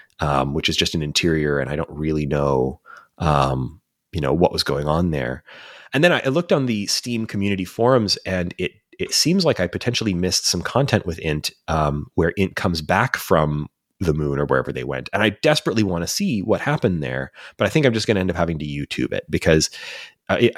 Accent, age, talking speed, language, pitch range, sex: American, 30-49, 225 wpm, English, 80-110 Hz, male